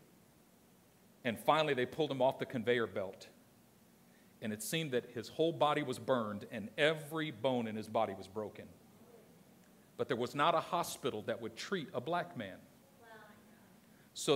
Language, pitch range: English, 125-205 Hz